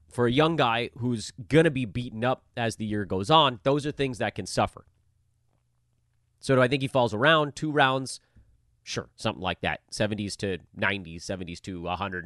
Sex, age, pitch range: male, 30-49, 105-145 Hz